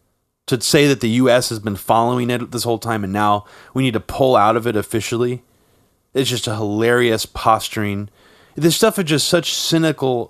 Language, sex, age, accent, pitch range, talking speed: English, male, 30-49, American, 120-170 Hz, 190 wpm